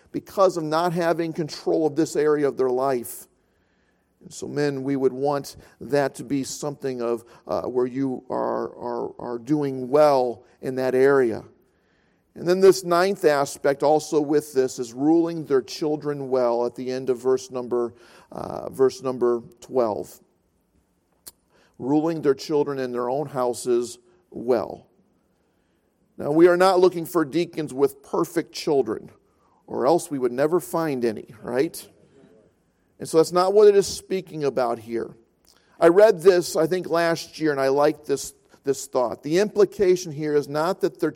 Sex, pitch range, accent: male, 130-175 Hz, American